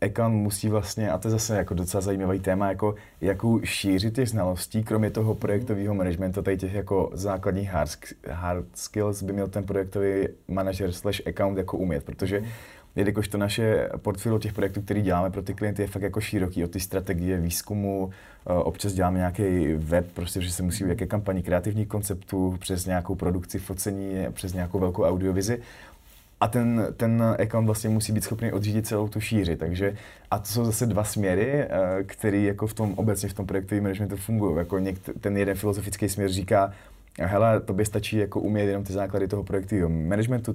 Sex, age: male, 20-39